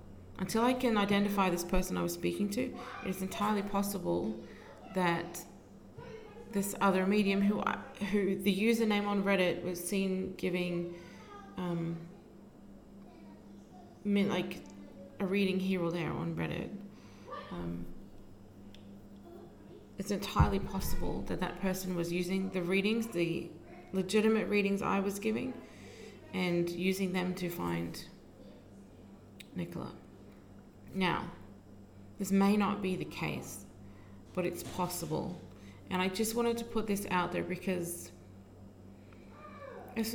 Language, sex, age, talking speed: English, female, 30-49, 120 wpm